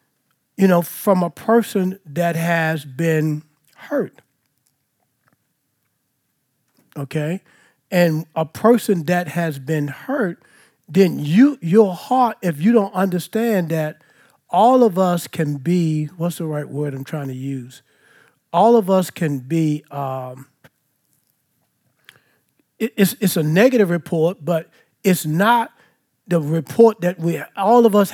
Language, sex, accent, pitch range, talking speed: English, male, American, 150-185 Hz, 130 wpm